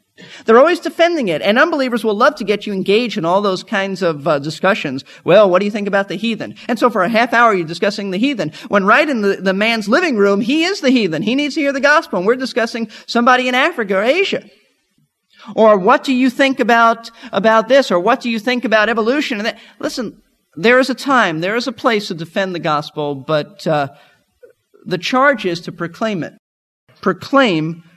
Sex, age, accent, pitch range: male, 40-59, American, 170-245 Hz